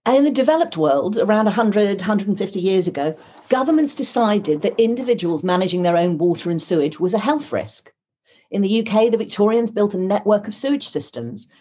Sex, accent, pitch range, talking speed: female, British, 180-230 Hz, 180 wpm